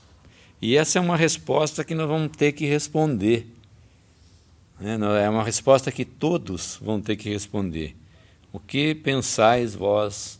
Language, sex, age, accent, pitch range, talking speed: English, male, 60-79, Brazilian, 95-125 Hz, 145 wpm